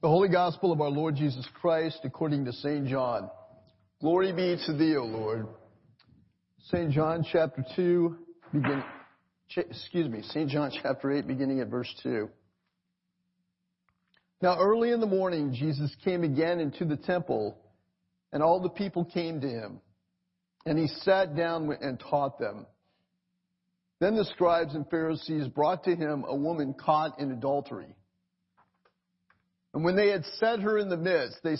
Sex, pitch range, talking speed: male, 135-180 Hz, 155 wpm